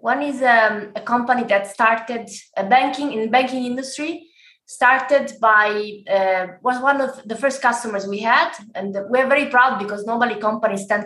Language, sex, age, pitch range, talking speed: English, female, 20-39, 195-240 Hz, 175 wpm